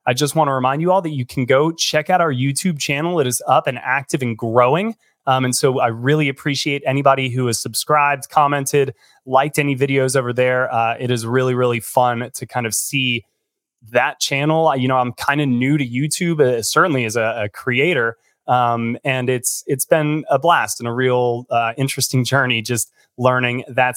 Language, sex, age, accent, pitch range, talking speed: English, male, 20-39, American, 120-145 Hz, 205 wpm